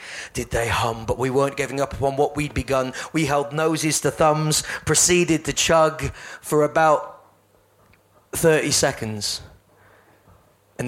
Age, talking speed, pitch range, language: 30-49, 140 wpm, 115-150 Hz, English